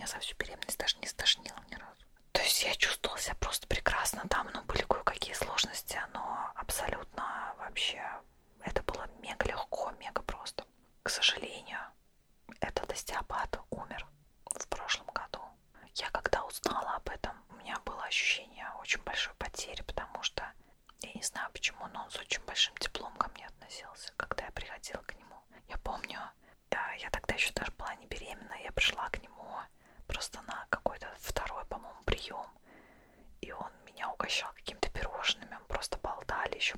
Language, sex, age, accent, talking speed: Russian, female, 20-39, native, 165 wpm